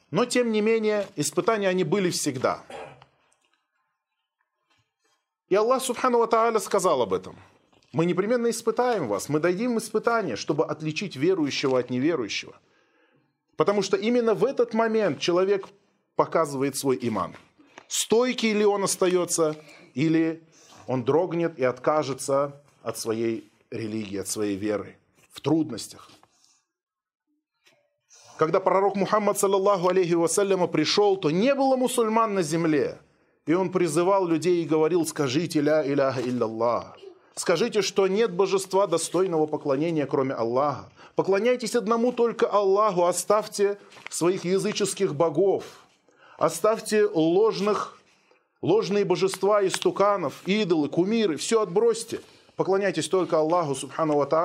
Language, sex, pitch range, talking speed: Russian, male, 155-215 Hz, 115 wpm